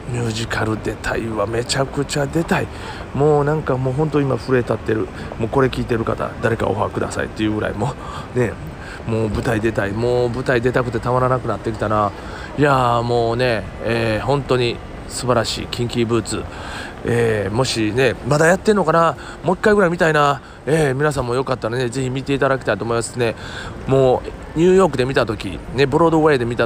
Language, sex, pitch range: Japanese, male, 105-135 Hz